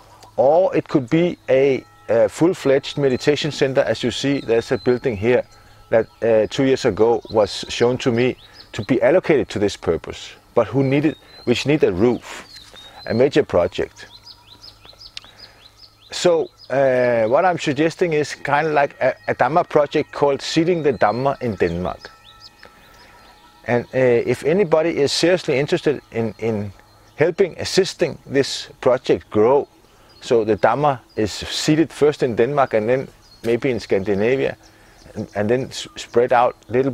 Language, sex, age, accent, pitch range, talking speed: English, male, 40-59, Danish, 105-140 Hz, 150 wpm